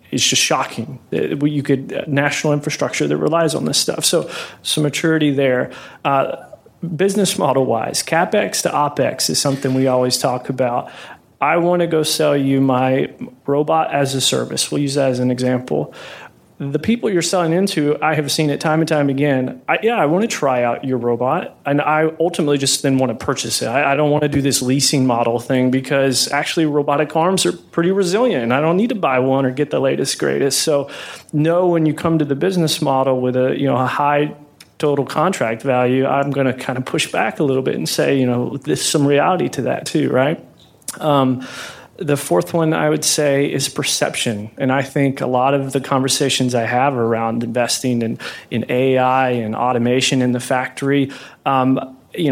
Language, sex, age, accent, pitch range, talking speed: English, male, 30-49, American, 130-150 Hz, 205 wpm